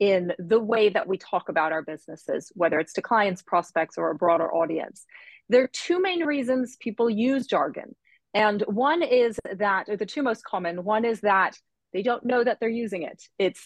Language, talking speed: English, 200 wpm